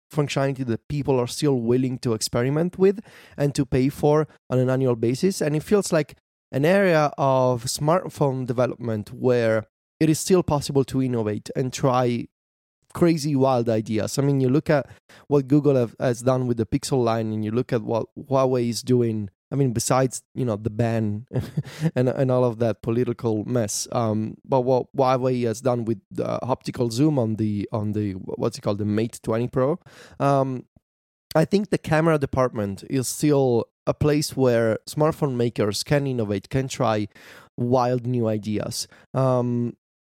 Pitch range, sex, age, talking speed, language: 115-150 Hz, male, 20-39, 170 wpm, English